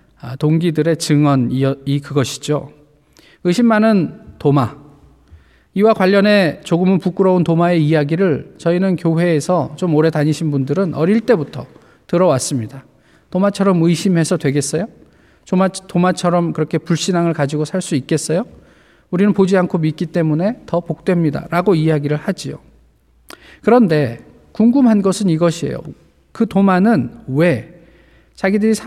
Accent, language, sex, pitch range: native, Korean, male, 145-195 Hz